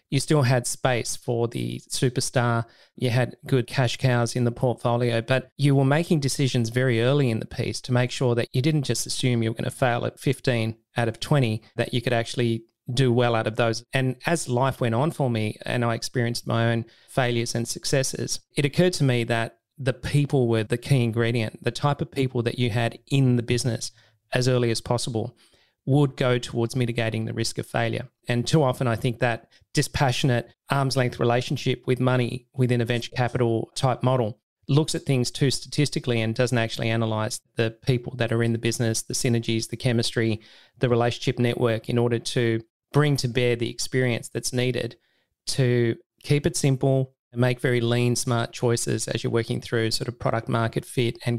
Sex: male